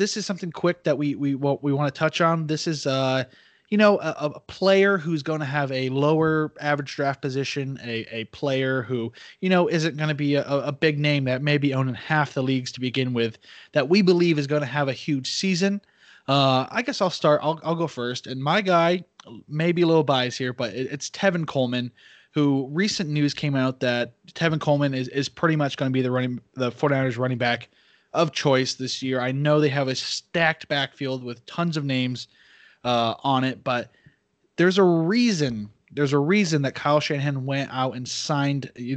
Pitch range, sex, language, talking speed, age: 130-160 Hz, male, English, 215 wpm, 20-39